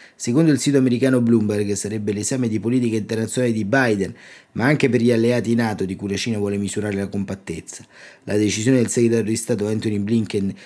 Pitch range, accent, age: 105-125 Hz, native, 30-49